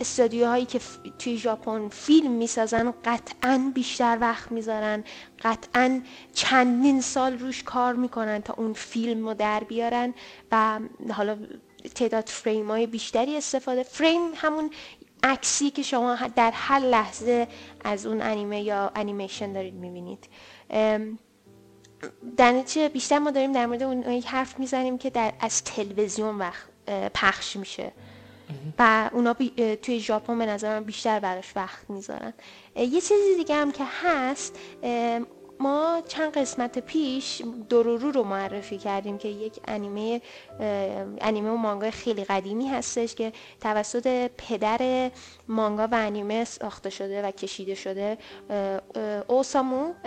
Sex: female